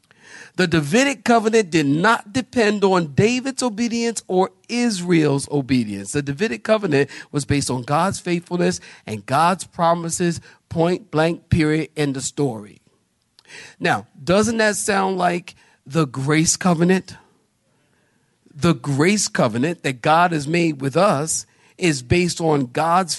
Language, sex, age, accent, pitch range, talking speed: English, male, 50-69, American, 145-215 Hz, 130 wpm